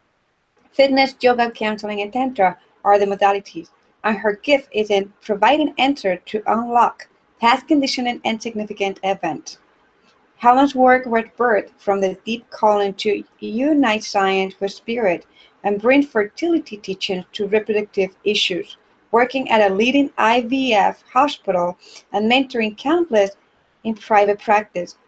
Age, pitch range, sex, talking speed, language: 40-59, 200-245 Hz, female, 130 wpm, English